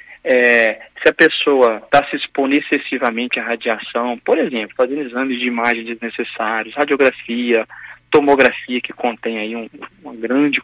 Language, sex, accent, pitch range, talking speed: Portuguese, male, Brazilian, 120-160 Hz, 140 wpm